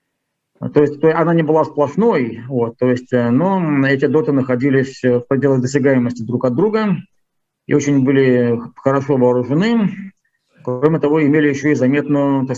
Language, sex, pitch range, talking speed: Russian, male, 120-145 Hz, 150 wpm